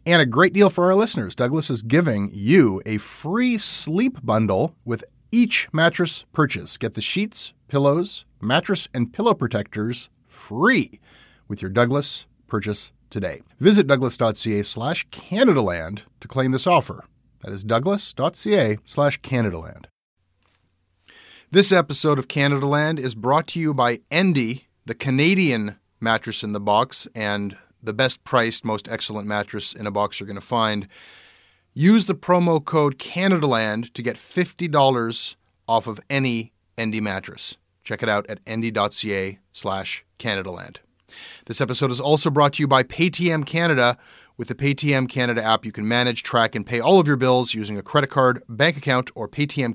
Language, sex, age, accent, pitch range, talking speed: English, male, 30-49, American, 110-150 Hz, 155 wpm